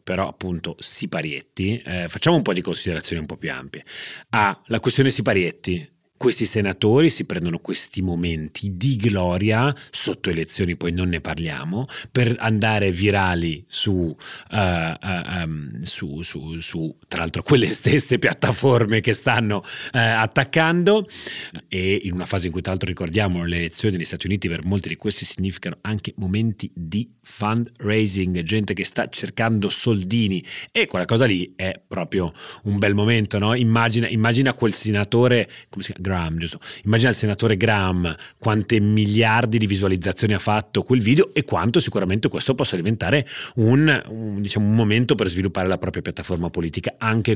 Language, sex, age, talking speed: Italian, male, 30-49, 165 wpm